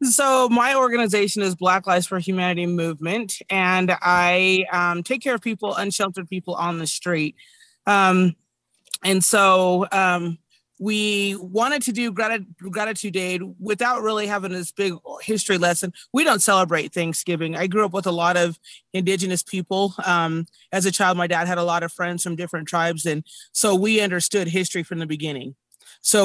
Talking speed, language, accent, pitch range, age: 170 wpm, English, American, 170-200 Hz, 30-49